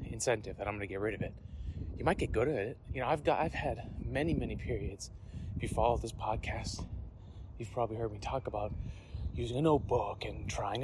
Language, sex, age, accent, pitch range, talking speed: English, male, 30-49, American, 100-125 Hz, 220 wpm